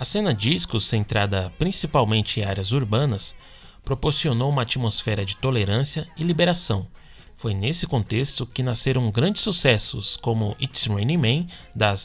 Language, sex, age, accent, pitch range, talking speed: Portuguese, male, 20-39, Brazilian, 105-140 Hz, 135 wpm